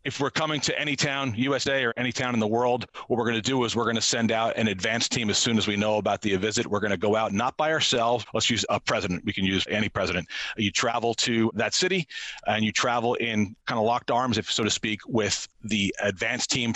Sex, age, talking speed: male, 40-59, 250 wpm